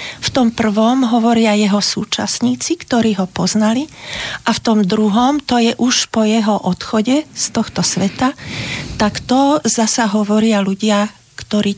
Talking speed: 145 wpm